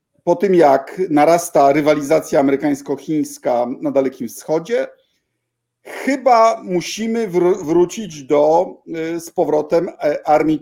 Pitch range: 140-210 Hz